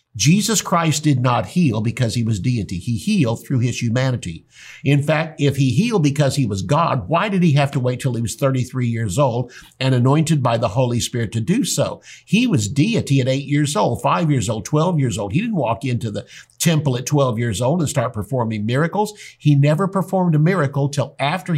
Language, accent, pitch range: English, American, 125-170 Hz